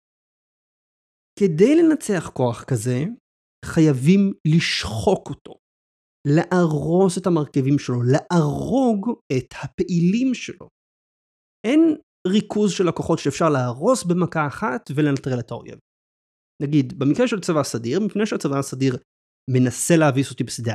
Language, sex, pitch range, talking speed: Hebrew, male, 135-195 Hz, 110 wpm